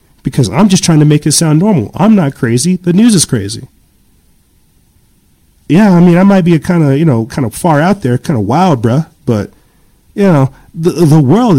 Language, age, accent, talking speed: English, 40-59, American, 215 wpm